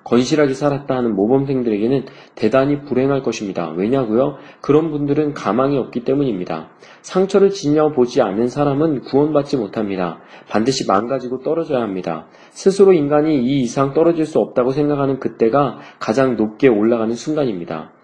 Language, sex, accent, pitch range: Korean, male, native, 115-155 Hz